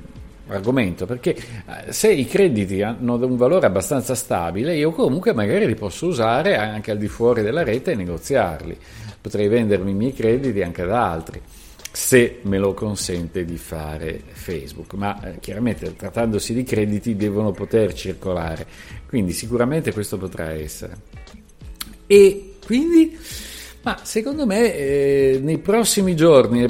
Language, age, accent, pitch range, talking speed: Italian, 50-69, native, 100-130 Hz, 140 wpm